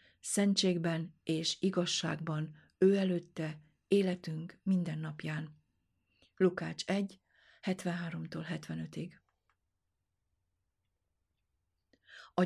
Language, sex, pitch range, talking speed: Hungarian, female, 160-185 Hz, 60 wpm